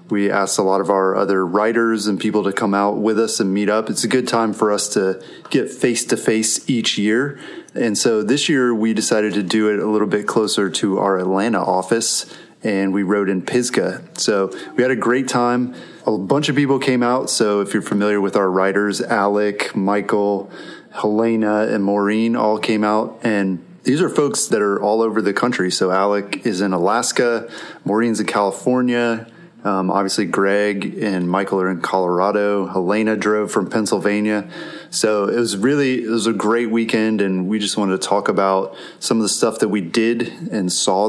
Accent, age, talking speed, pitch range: American, 30-49, 195 wpm, 100-110 Hz